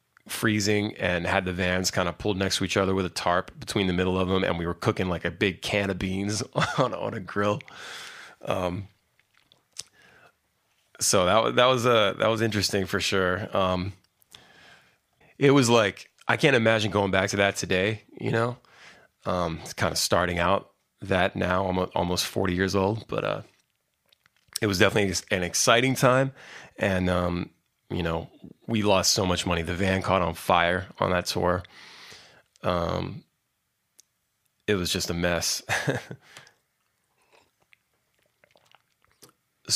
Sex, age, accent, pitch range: male, 20-39, American, 90-110 Hz